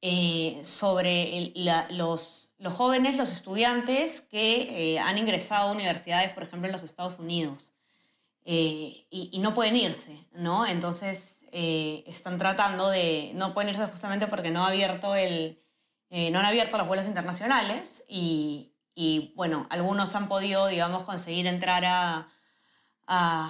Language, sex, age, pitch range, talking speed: Spanish, female, 20-39, 170-205 Hz, 140 wpm